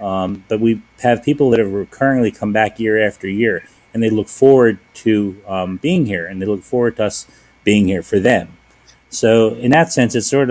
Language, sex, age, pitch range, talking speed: English, male, 30-49, 100-120 Hz, 210 wpm